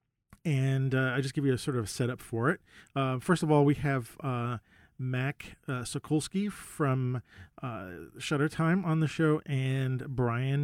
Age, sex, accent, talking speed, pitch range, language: 40-59, male, American, 175 wpm, 120-155 Hz, English